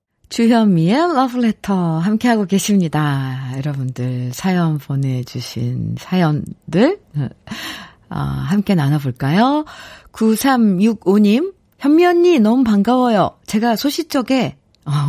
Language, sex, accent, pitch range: Korean, female, native, 155-245 Hz